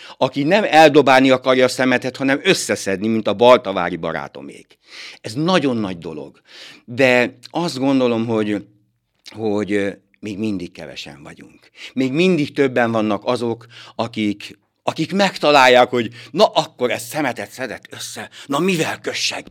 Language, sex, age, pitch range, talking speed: Hungarian, male, 60-79, 95-130 Hz, 130 wpm